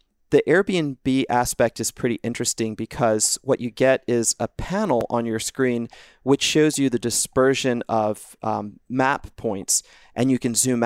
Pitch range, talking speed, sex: 115-135 Hz, 160 wpm, male